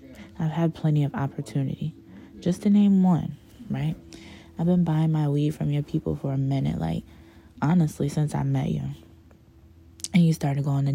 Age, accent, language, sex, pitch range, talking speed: 20-39, American, English, female, 130-160 Hz, 175 wpm